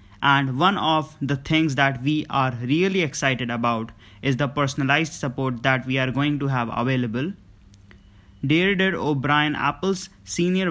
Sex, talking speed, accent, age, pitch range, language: male, 145 wpm, Indian, 20-39, 125-155 Hz, English